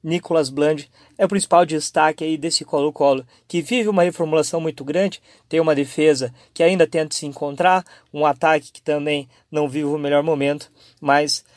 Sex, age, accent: male, 20-39, Brazilian